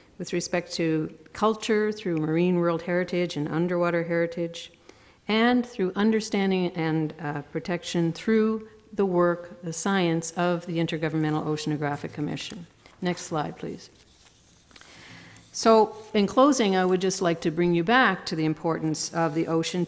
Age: 50-69